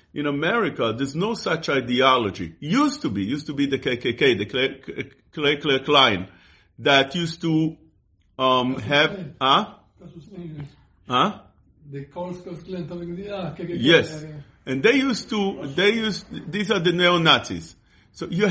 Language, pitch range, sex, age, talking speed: English, 125-175 Hz, male, 50-69, 125 wpm